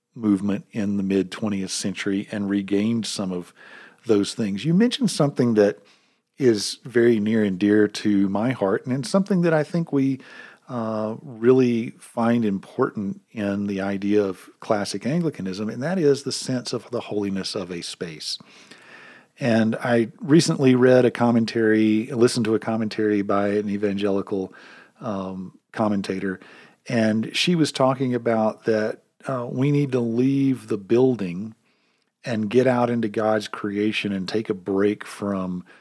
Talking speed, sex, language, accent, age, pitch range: 150 wpm, male, English, American, 50-69, 105-125 Hz